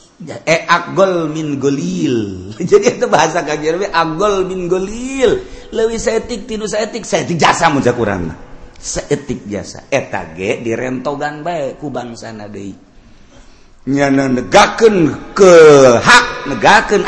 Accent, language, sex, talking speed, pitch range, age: native, Indonesian, male, 120 wpm, 110-175 Hz, 50-69